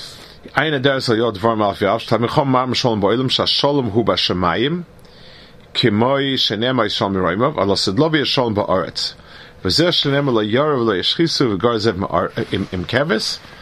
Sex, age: male, 40-59